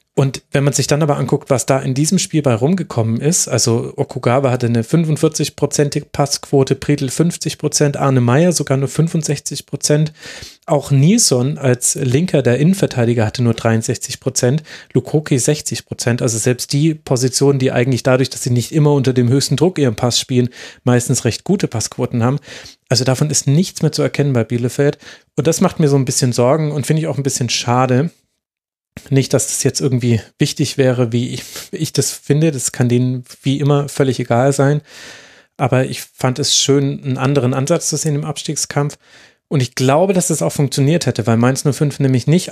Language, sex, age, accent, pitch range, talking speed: German, male, 30-49, German, 125-150 Hz, 190 wpm